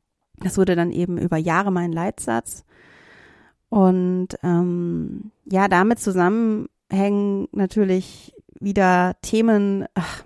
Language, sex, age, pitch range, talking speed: German, female, 30-49, 180-230 Hz, 100 wpm